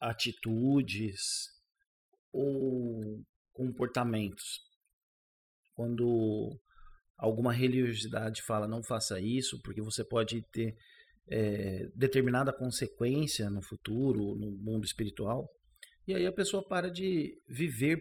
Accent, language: Brazilian, Portuguese